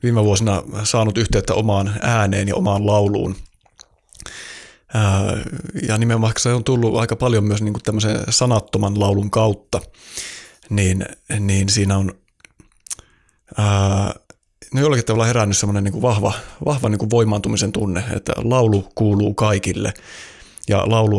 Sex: male